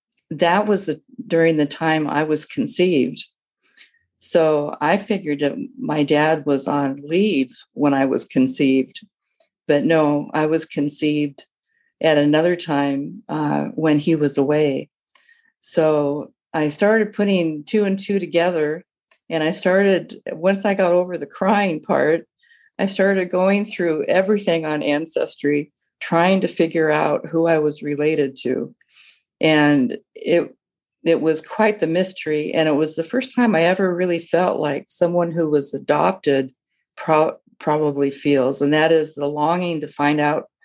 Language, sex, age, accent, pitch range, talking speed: English, female, 50-69, American, 150-190 Hz, 150 wpm